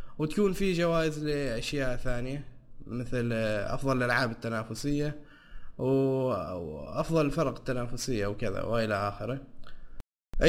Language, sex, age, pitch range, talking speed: Arabic, male, 20-39, 125-155 Hz, 85 wpm